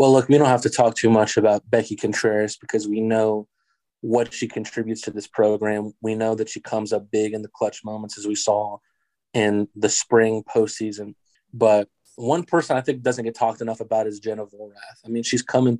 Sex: male